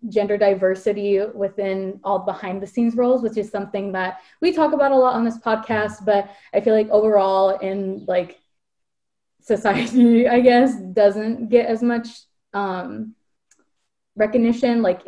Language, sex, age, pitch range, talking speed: English, female, 20-39, 190-230 Hz, 145 wpm